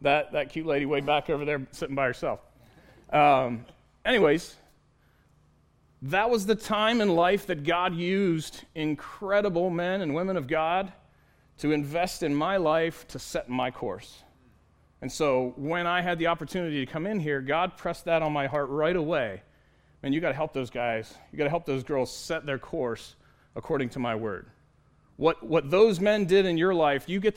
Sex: male